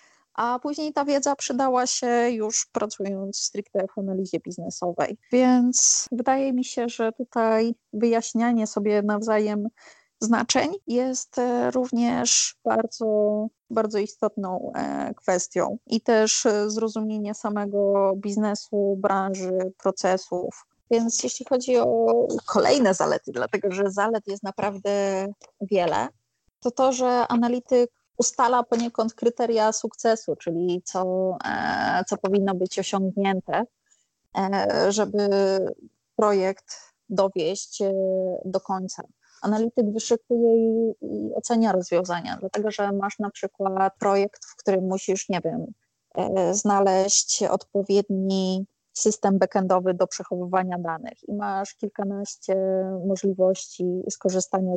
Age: 30-49